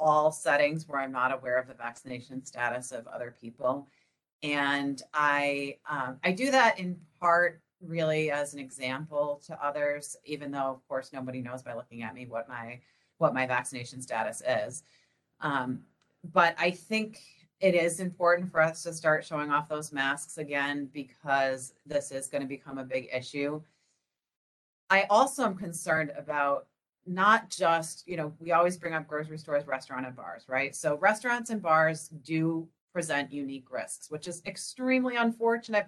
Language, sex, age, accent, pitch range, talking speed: English, female, 30-49, American, 140-175 Hz, 165 wpm